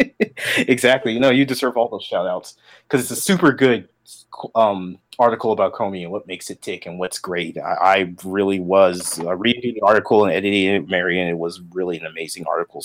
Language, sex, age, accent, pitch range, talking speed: English, male, 30-49, American, 110-145 Hz, 205 wpm